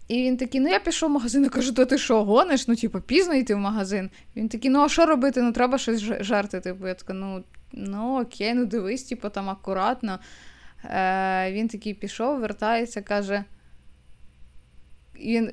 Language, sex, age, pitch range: Ukrainian, female, 20-39, 195-245 Hz